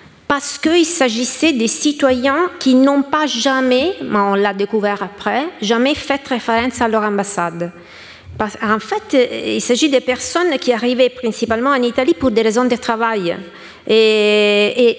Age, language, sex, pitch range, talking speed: 40-59, French, female, 205-260 Hz, 150 wpm